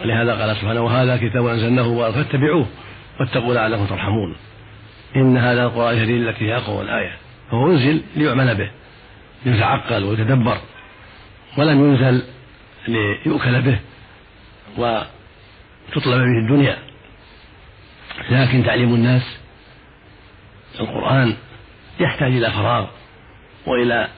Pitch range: 105-125 Hz